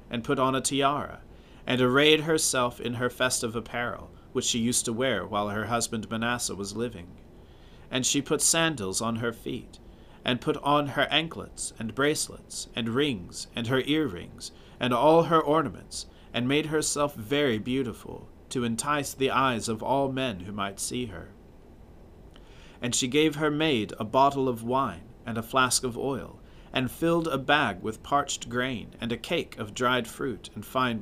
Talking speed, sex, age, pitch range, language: 175 wpm, male, 40-59, 110-140 Hz, English